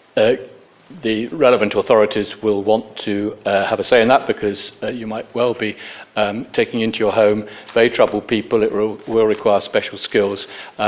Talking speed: 175 wpm